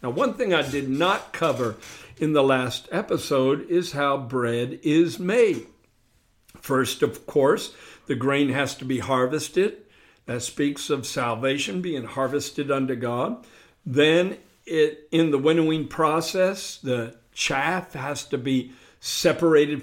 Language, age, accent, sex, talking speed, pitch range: English, 60-79, American, male, 135 wpm, 130-165 Hz